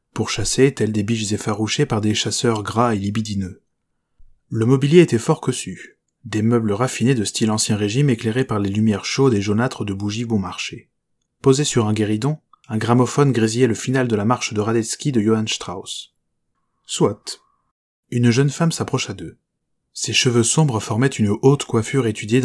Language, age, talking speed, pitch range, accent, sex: French, 20-39, 175 wpm, 105-130 Hz, French, male